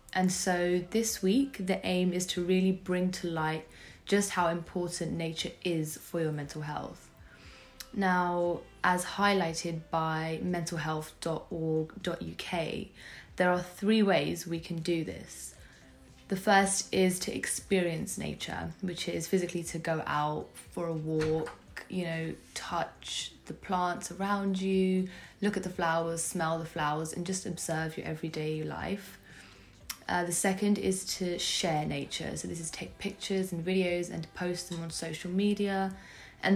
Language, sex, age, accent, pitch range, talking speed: English, female, 20-39, British, 160-190 Hz, 150 wpm